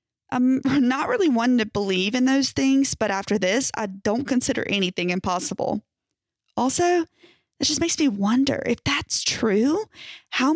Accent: American